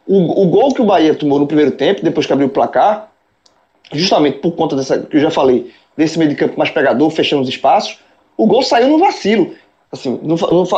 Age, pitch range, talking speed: 20-39, 175-265 Hz, 215 wpm